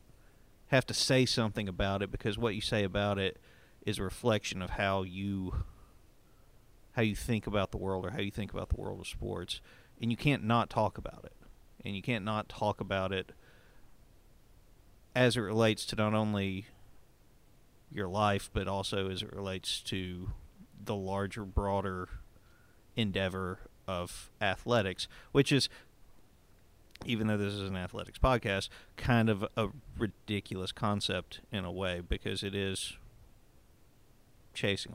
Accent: American